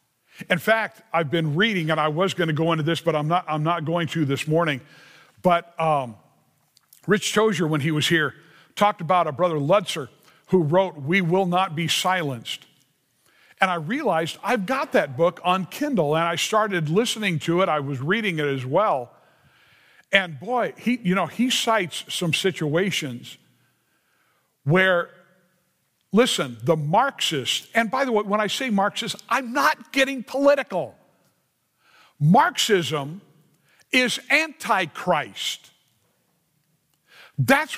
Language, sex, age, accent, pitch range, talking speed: English, male, 50-69, American, 160-220 Hz, 145 wpm